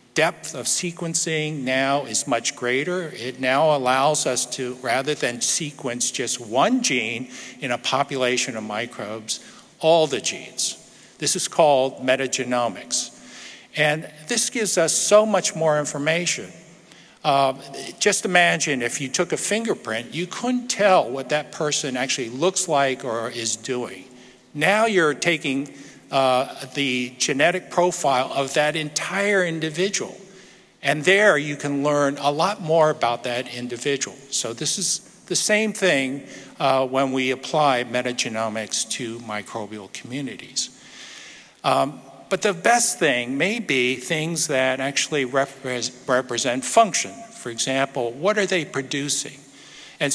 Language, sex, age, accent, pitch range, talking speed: English, male, 50-69, American, 125-170 Hz, 135 wpm